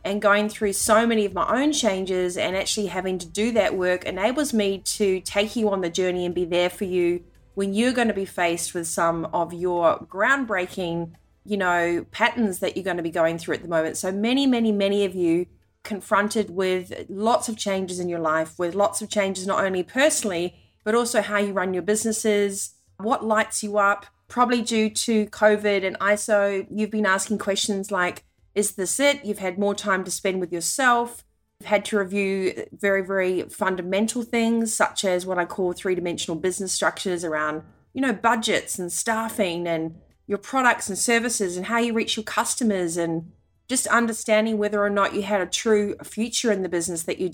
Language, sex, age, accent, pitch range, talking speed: English, female, 30-49, Australian, 180-220 Hz, 200 wpm